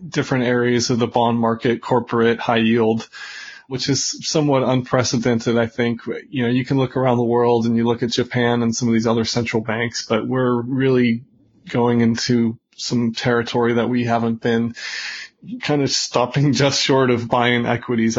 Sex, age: female, 20-39